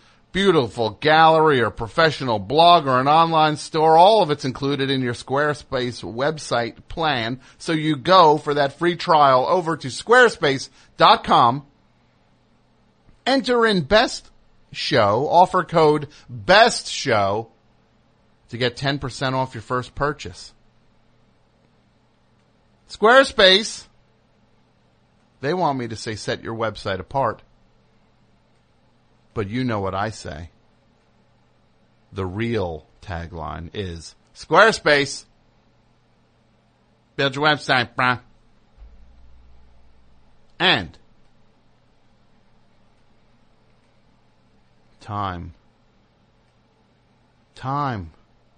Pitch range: 110-150 Hz